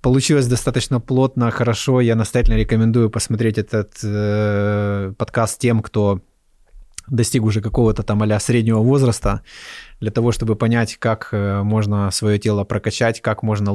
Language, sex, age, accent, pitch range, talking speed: Russian, male, 20-39, native, 105-125 Hz, 140 wpm